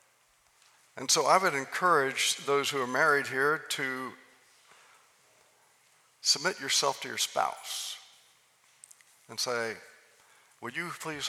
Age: 60-79